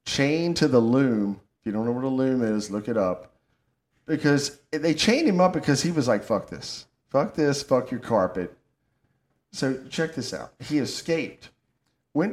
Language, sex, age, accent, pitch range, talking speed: English, male, 50-69, American, 125-185 Hz, 185 wpm